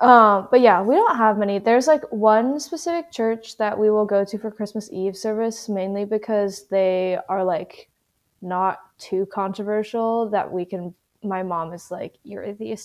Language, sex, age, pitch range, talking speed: English, female, 20-39, 190-230 Hz, 175 wpm